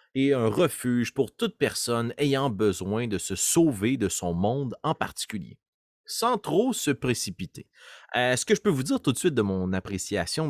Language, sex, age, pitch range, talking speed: French, male, 30-49, 105-155 Hz, 190 wpm